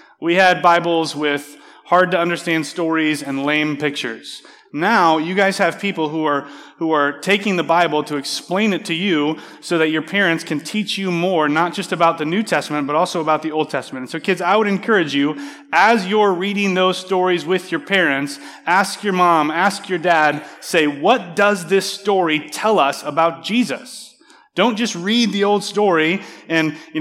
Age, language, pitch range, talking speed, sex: 30-49, English, 150-190 Hz, 190 wpm, male